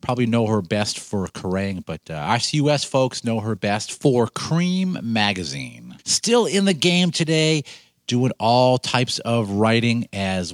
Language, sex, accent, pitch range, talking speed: English, male, American, 110-145 Hz, 155 wpm